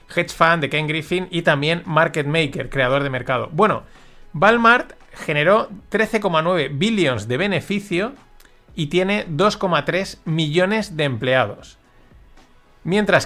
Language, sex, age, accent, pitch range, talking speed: Spanish, male, 30-49, Spanish, 130-175 Hz, 120 wpm